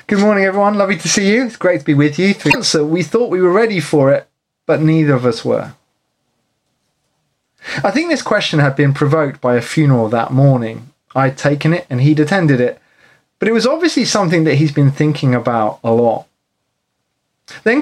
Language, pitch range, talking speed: English, 135-210 Hz, 195 wpm